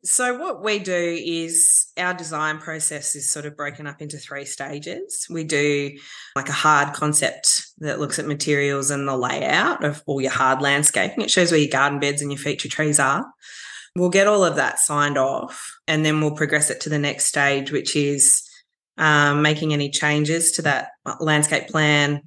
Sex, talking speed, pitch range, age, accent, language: female, 190 wpm, 140-160 Hz, 20-39, Australian, English